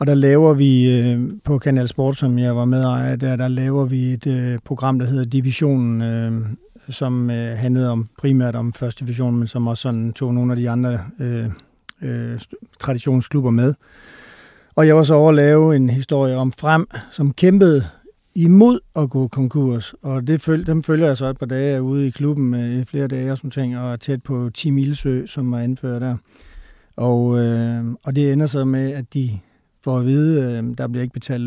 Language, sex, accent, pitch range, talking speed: Danish, male, native, 125-145 Hz, 180 wpm